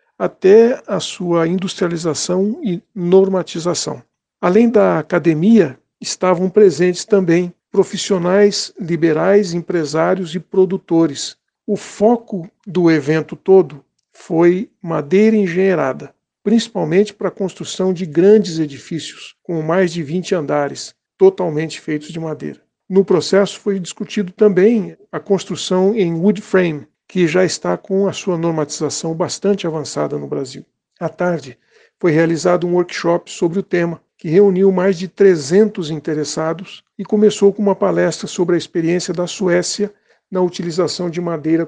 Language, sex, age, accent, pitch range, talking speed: Portuguese, male, 60-79, Brazilian, 165-195 Hz, 130 wpm